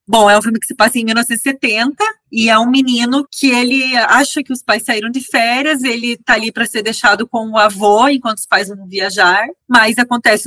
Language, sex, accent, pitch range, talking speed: Portuguese, female, Brazilian, 215-260 Hz, 220 wpm